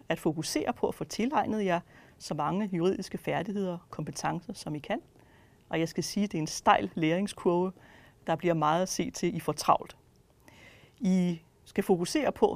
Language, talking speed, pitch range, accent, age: Danish, 175 wpm, 165-225 Hz, native, 40-59